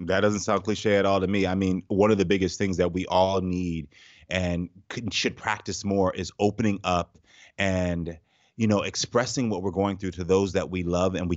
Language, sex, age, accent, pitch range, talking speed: English, male, 30-49, American, 90-110 Hz, 220 wpm